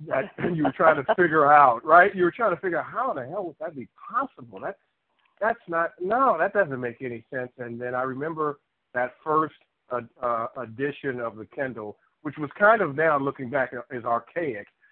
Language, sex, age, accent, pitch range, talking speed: English, male, 50-69, American, 120-155 Hz, 200 wpm